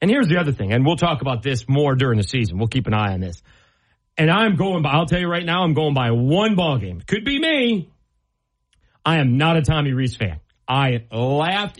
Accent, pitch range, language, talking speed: American, 110-155 Hz, English, 240 wpm